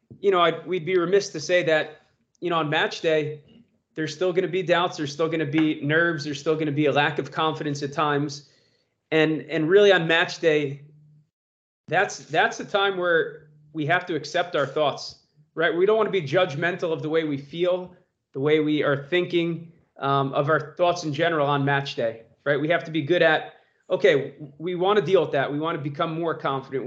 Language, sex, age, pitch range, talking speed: English, male, 30-49, 150-180 Hz, 225 wpm